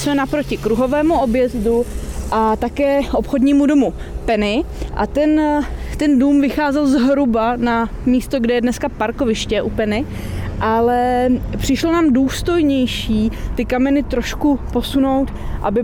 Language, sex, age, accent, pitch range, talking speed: Czech, female, 20-39, native, 225-275 Hz, 120 wpm